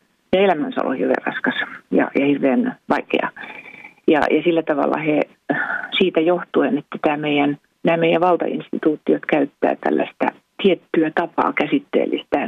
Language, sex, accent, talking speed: Finnish, female, native, 120 wpm